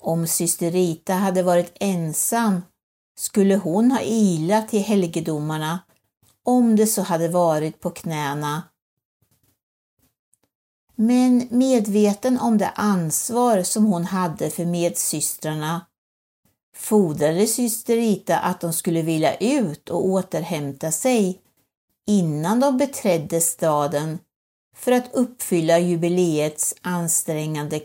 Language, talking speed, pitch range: Swedish, 100 wpm, 160-215 Hz